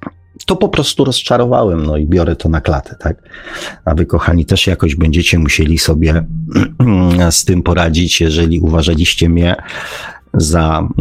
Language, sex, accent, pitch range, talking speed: Polish, male, native, 80-95 Hz, 140 wpm